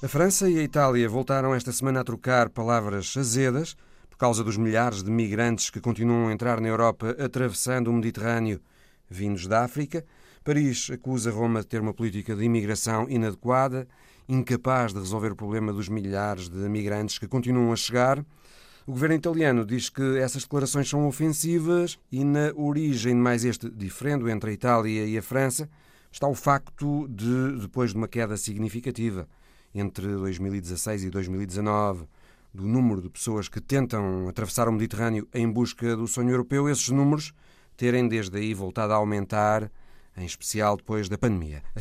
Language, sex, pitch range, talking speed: Portuguese, male, 110-135 Hz, 165 wpm